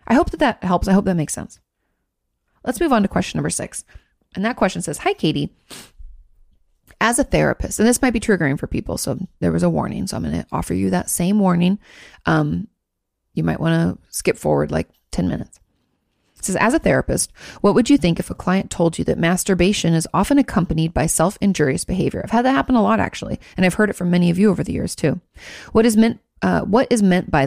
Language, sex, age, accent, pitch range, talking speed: English, female, 30-49, American, 160-210 Hz, 235 wpm